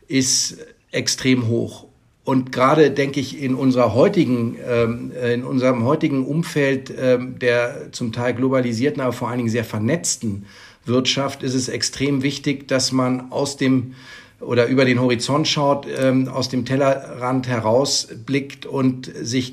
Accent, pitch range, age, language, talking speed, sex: German, 120-135 Hz, 50-69, German, 135 wpm, male